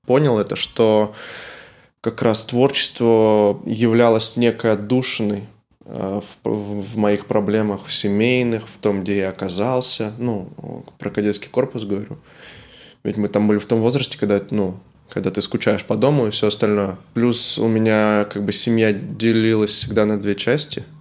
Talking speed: 150 wpm